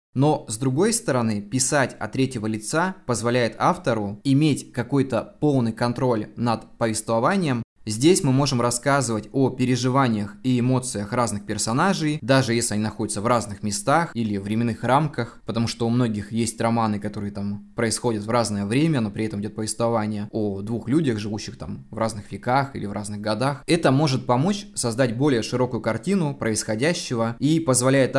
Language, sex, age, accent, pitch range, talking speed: Russian, male, 20-39, native, 110-135 Hz, 160 wpm